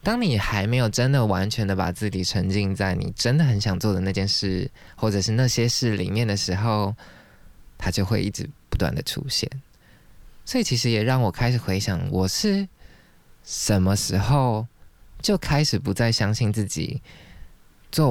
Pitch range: 95-130 Hz